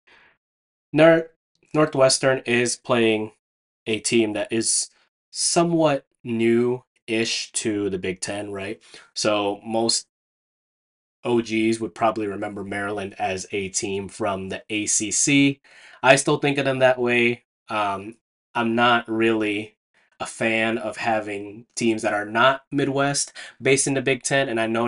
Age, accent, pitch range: 20-39, American, 100-125 Hz